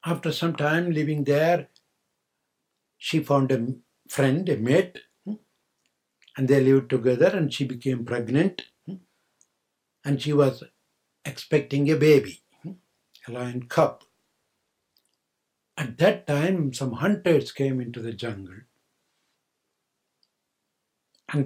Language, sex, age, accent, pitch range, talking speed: English, male, 70-89, Indian, 125-155 Hz, 105 wpm